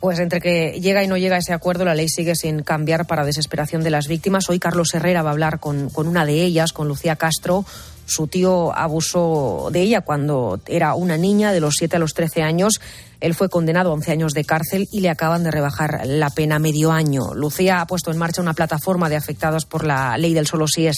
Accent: Spanish